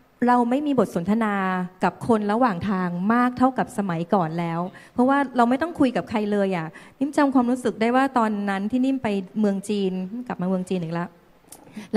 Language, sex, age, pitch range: Thai, female, 20-39, 195-245 Hz